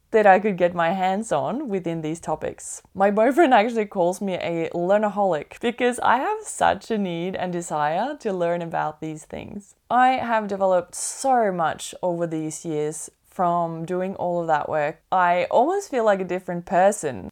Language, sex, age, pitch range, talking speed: English, female, 20-39, 180-260 Hz, 175 wpm